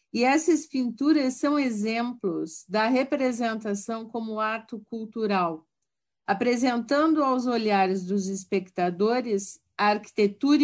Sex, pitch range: female, 195-255 Hz